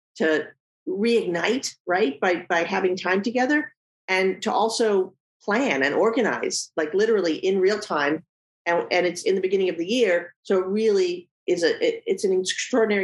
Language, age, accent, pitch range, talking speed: English, 40-59, American, 155-200 Hz, 170 wpm